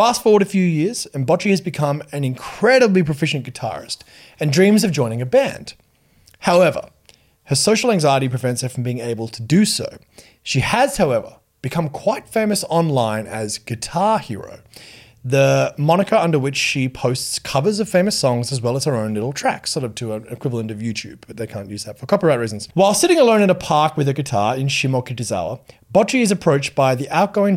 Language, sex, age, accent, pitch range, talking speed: English, male, 30-49, Australian, 120-175 Hz, 195 wpm